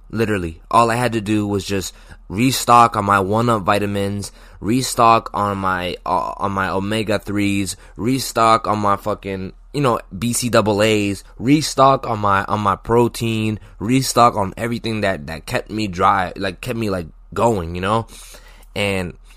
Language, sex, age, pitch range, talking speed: English, male, 20-39, 95-110 Hz, 160 wpm